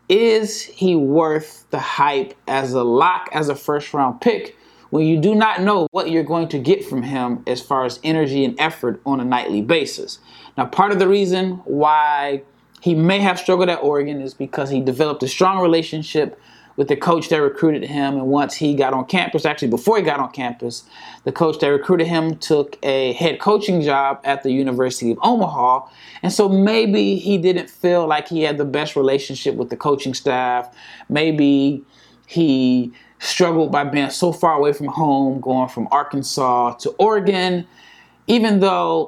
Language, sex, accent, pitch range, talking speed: English, male, American, 135-170 Hz, 185 wpm